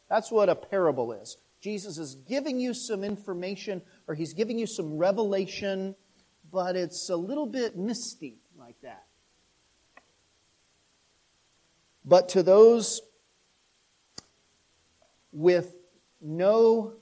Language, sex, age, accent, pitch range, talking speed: English, male, 40-59, American, 145-200 Hz, 105 wpm